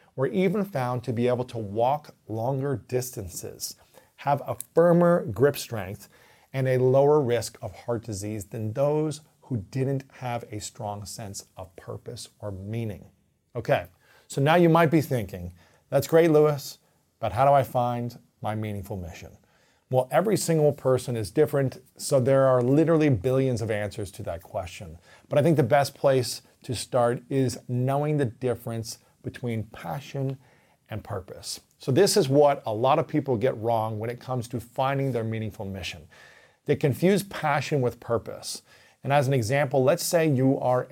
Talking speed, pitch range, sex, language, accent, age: 170 wpm, 115-140 Hz, male, English, American, 40-59